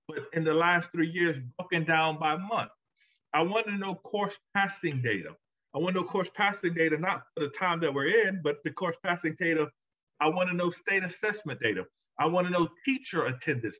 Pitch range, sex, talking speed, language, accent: 150-200 Hz, male, 215 wpm, English, American